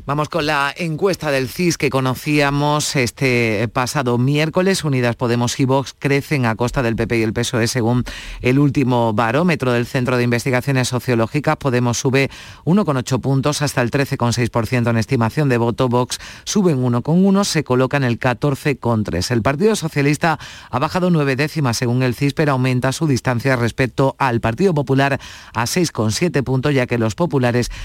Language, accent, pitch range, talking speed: Spanish, Spanish, 115-145 Hz, 160 wpm